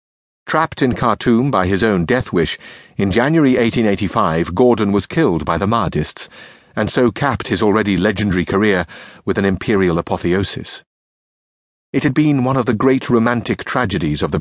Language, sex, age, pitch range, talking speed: English, male, 50-69, 90-125 Hz, 160 wpm